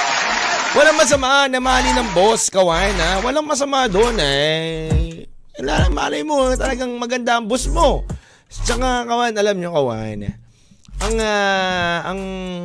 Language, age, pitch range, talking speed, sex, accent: Filipino, 20-39, 175-255 Hz, 135 wpm, male, native